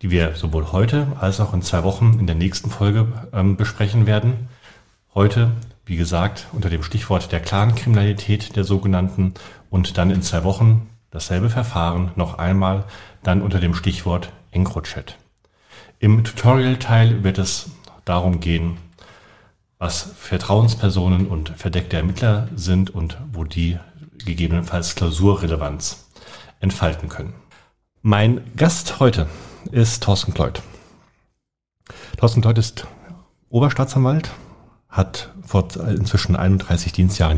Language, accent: German, German